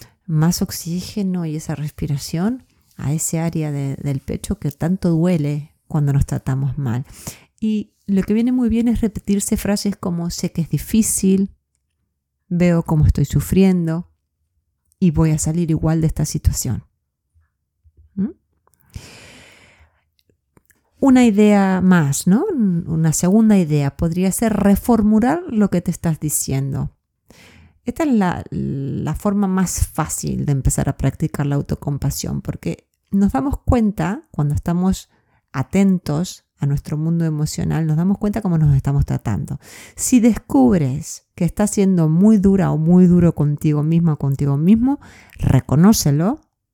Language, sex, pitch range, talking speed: Spanish, female, 145-200 Hz, 135 wpm